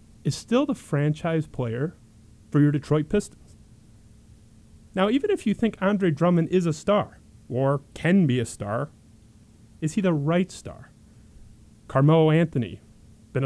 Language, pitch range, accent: English, 110-165 Hz, American